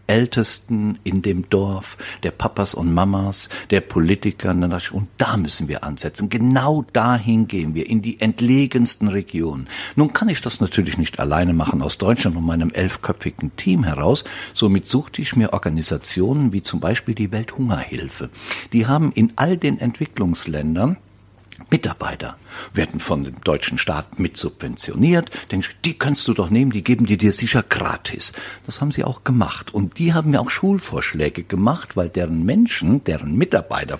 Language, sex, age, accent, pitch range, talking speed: German, male, 60-79, German, 95-135 Hz, 160 wpm